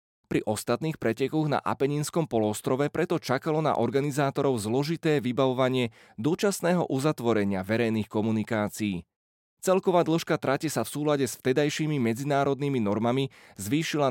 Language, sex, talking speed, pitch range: Slovak, male, 115 wpm, 115-160 Hz